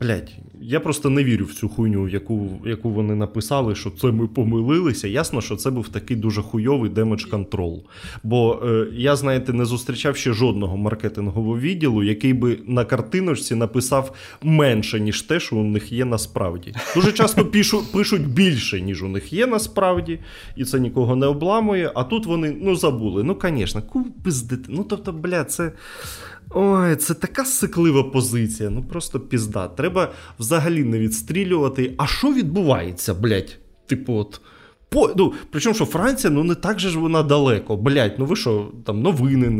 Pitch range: 105-160 Hz